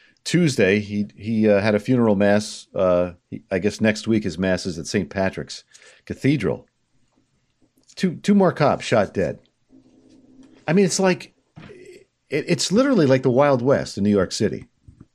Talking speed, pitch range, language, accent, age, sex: 165 wpm, 115-180 Hz, English, American, 50-69, male